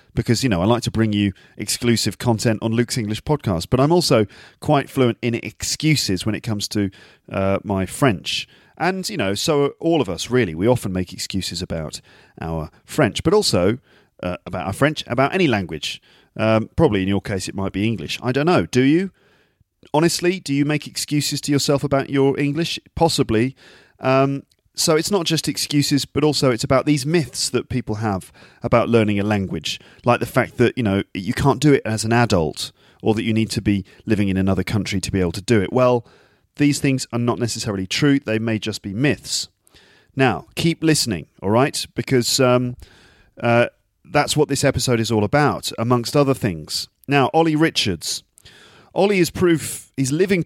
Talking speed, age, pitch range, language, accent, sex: 195 wpm, 40-59, 105-140 Hz, English, British, male